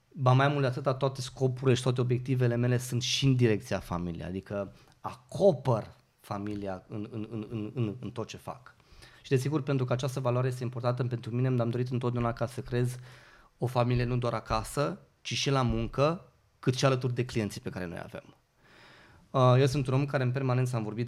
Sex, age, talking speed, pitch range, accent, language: male, 30-49, 195 wpm, 115-135 Hz, native, Romanian